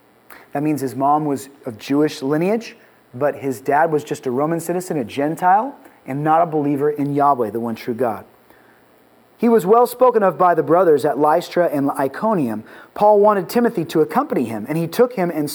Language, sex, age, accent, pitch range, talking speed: English, male, 30-49, American, 150-205 Hz, 195 wpm